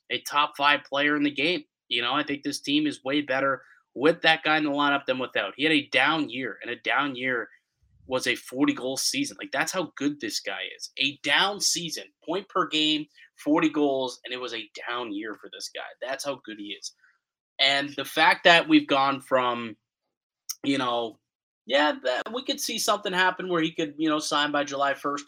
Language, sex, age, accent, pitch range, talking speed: English, male, 20-39, American, 125-165 Hz, 215 wpm